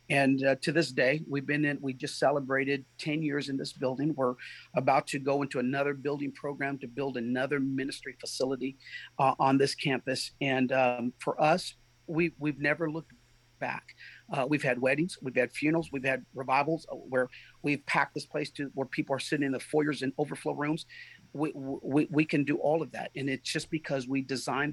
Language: English